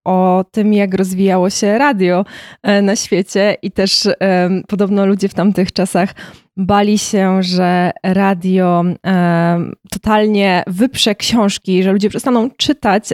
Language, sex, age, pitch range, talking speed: Polish, female, 20-39, 185-225 Hz, 130 wpm